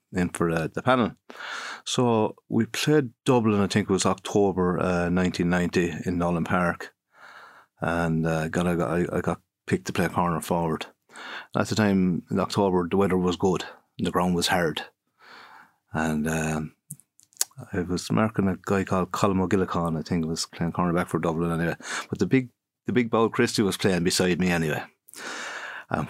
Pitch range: 85-120 Hz